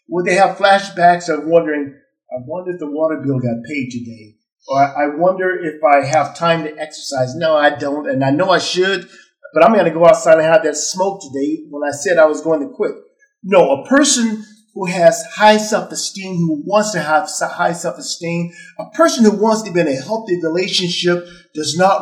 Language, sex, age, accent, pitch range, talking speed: English, male, 50-69, American, 150-205 Hz, 205 wpm